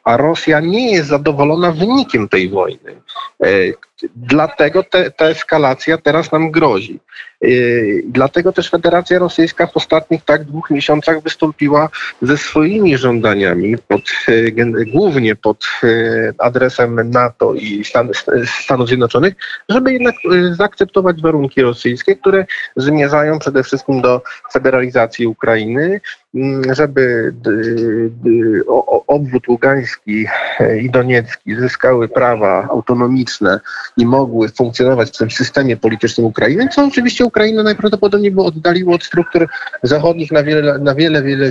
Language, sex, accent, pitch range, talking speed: Polish, male, native, 125-195 Hz, 110 wpm